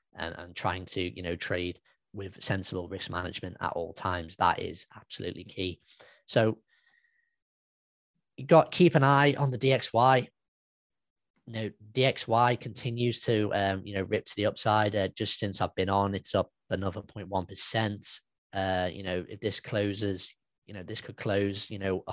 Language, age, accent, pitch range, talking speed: English, 20-39, British, 95-110 Hz, 175 wpm